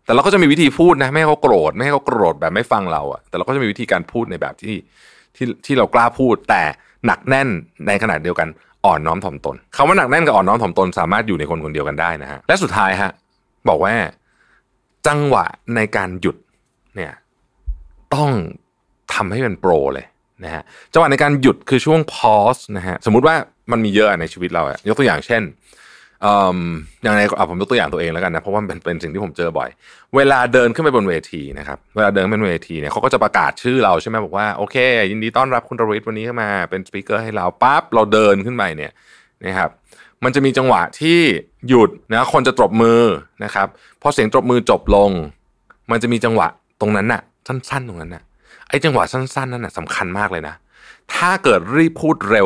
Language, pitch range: Thai, 95-130 Hz